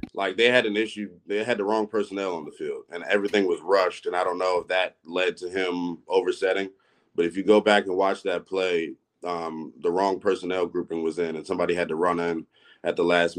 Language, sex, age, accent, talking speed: English, male, 30-49, American, 235 wpm